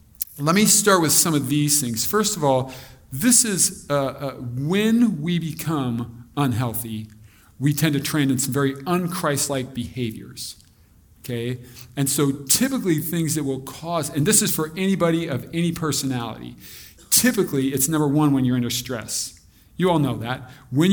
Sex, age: male, 40-59